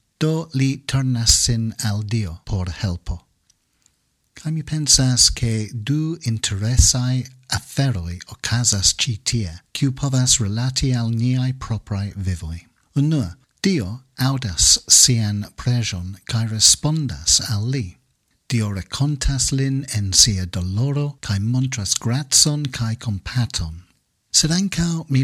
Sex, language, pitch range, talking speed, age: male, English, 105-130 Hz, 110 wpm, 50-69